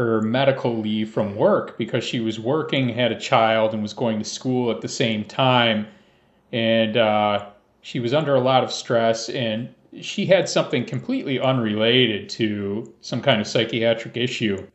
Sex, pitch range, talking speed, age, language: male, 110-130 Hz, 170 wpm, 40-59, English